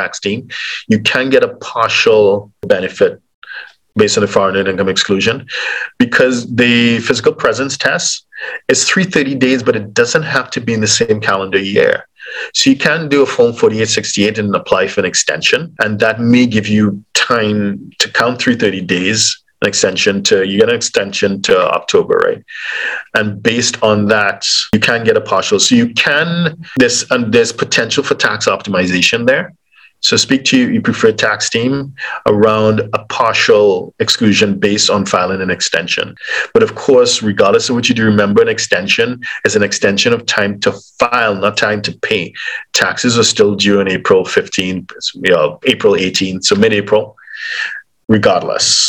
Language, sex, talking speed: English, male, 170 wpm